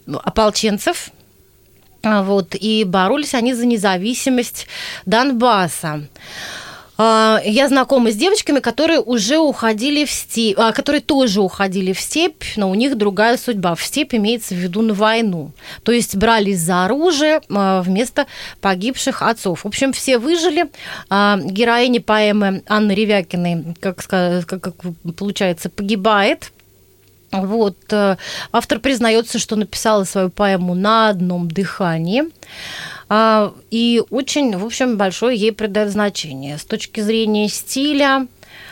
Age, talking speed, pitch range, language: 30-49, 115 wpm, 190-245 Hz, Russian